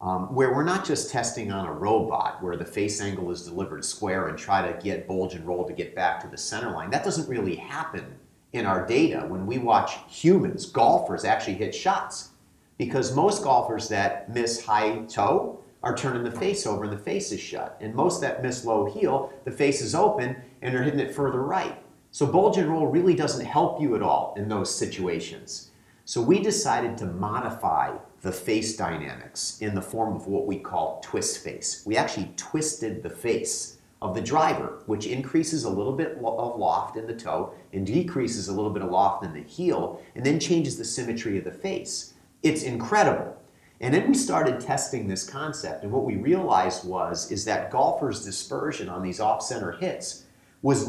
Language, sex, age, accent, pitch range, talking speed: English, male, 40-59, American, 100-140 Hz, 195 wpm